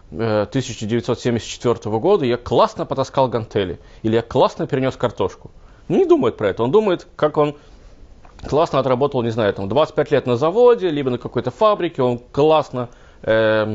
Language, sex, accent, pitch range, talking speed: Russian, male, native, 110-160 Hz, 150 wpm